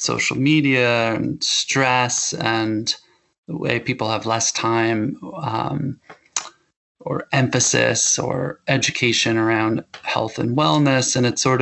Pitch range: 115-135 Hz